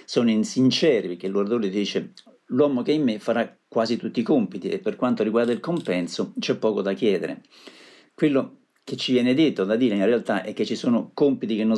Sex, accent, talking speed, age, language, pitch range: male, native, 210 wpm, 50-69, Italian, 105-135 Hz